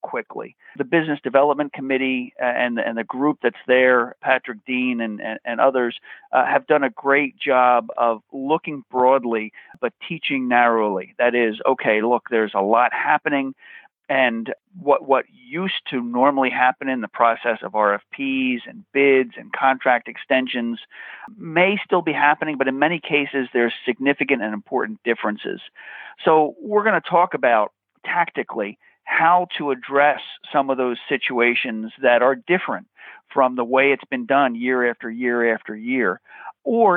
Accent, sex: American, male